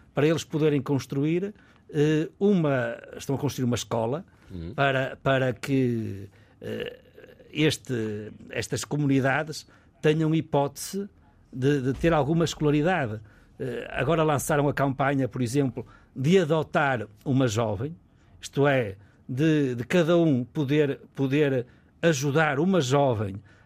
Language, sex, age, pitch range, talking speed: Portuguese, male, 60-79, 125-165 Hz, 110 wpm